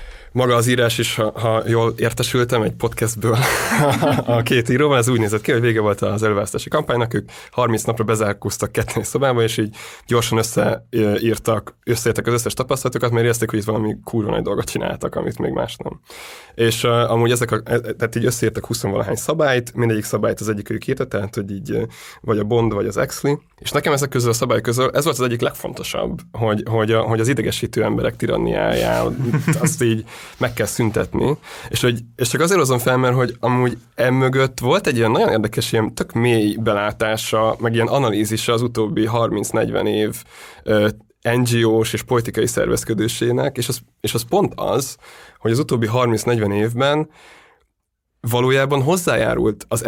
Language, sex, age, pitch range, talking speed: Hungarian, male, 20-39, 110-125 Hz, 175 wpm